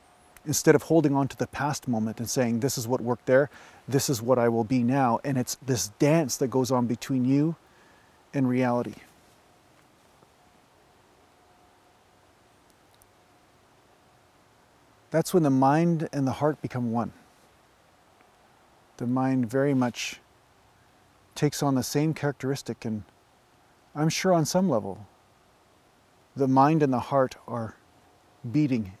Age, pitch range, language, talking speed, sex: 40-59, 120-145 Hz, English, 130 wpm, male